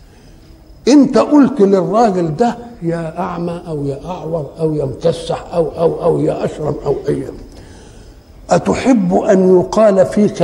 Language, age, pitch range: Arabic, 60-79, 175-235 Hz